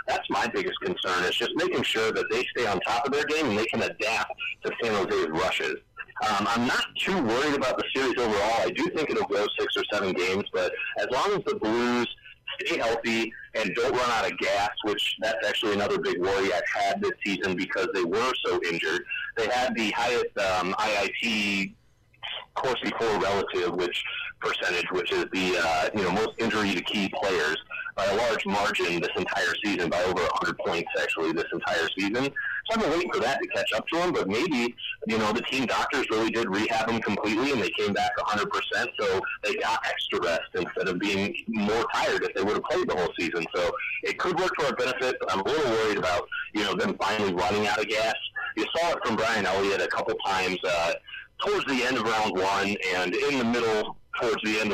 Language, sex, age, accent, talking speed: English, male, 40-59, American, 215 wpm